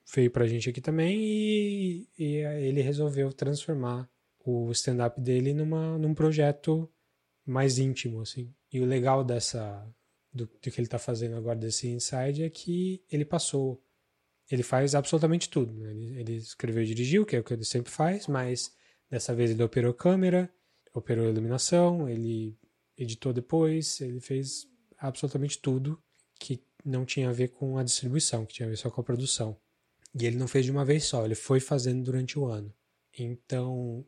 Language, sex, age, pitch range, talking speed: Portuguese, male, 20-39, 115-145 Hz, 175 wpm